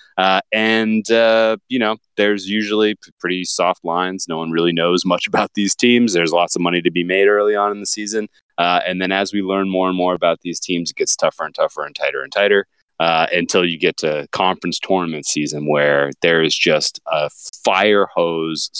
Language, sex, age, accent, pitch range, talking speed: English, male, 20-39, American, 85-100 Hz, 215 wpm